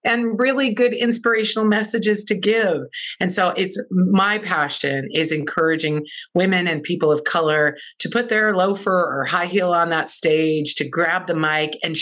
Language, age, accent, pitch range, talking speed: English, 40-59, American, 150-195 Hz, 170 wpm